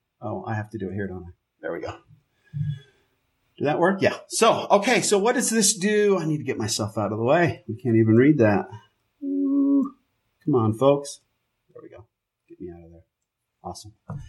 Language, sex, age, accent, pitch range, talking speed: English, male, 40-59, American, 145-195 Hz, 205 wpm